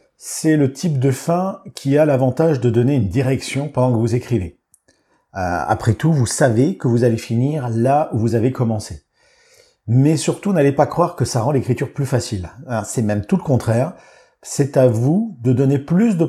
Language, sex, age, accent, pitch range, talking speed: French, male, 50-69, French, 115-155 Hz, 190 wpm